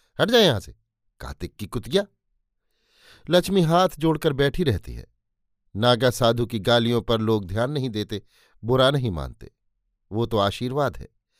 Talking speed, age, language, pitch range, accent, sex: 145 wpm, 50-69, Hindi, 110-140 Hz, native, male